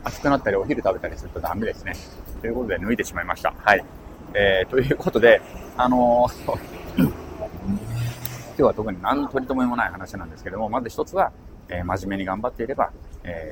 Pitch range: 95-140 Hz